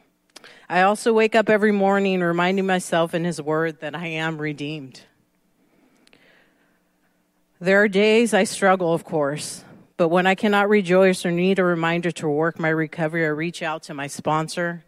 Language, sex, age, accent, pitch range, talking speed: English, female, 40-59, American, 155-190 Hz, 165 wpm